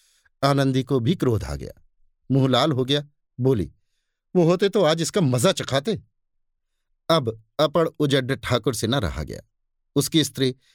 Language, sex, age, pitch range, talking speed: Hindi, male, 50-69, 110-150 Hz, 155 wpm